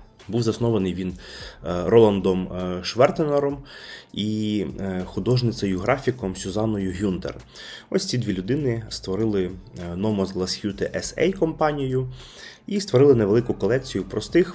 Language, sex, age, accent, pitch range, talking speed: Ukrainian, male, 20-39, native, 90-110 Hz, 95 wpm